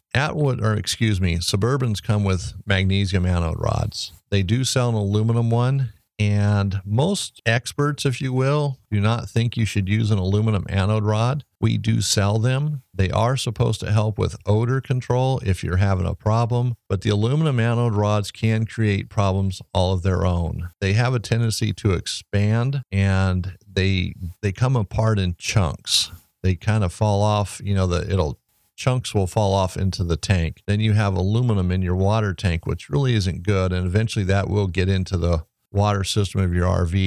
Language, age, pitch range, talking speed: English, 50-69, 95-115 Hz, 185 wpm